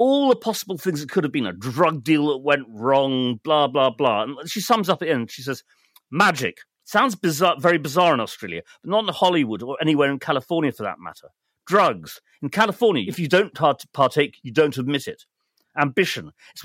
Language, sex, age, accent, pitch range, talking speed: English, male, 40-59, British, 130-175 Hz, 200 wpm